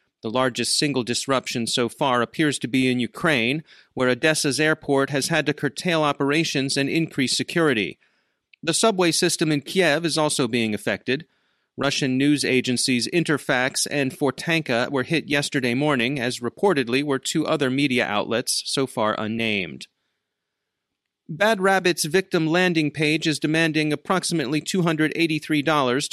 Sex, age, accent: male, 30-49, American